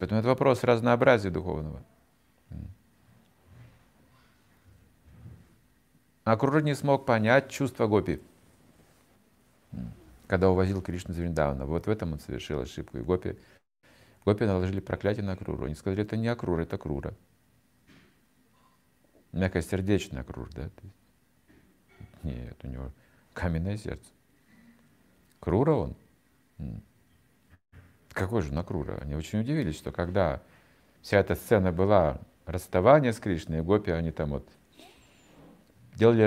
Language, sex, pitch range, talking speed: Russian, male, 90-115 Hz, 115 wpm